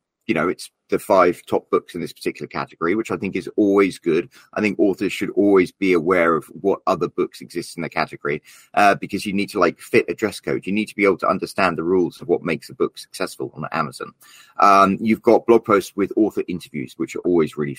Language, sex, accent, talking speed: English, male, British, 240 wpm